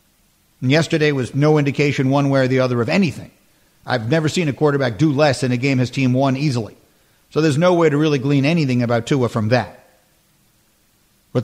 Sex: male